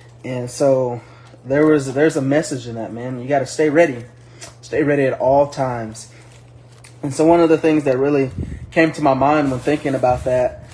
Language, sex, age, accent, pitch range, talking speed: English, male, 20-39, American, 125-150 Hz, 200 wpm